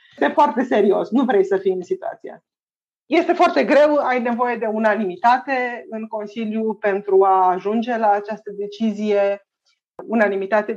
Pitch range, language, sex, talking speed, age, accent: 205-260 Hz, Romanian, female, 140 wpm, 30-49, native